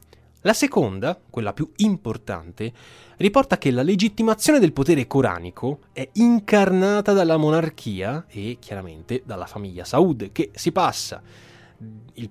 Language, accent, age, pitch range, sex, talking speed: Italian, native, 20-39, 110-180 Hz, male, 120 wpm